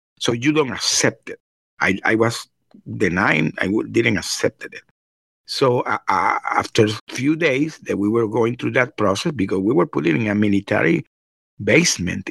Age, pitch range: 50-69, 105-145 Hz